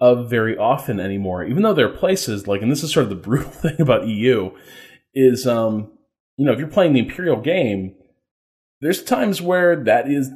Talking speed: 205 wpm